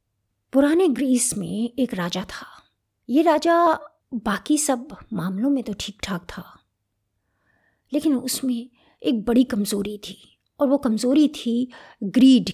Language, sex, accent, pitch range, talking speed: Hindi, female, native, 195-275 Hz, 130 wpm